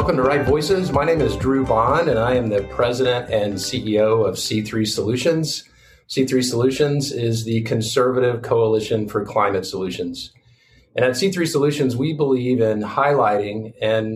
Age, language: 40-59, English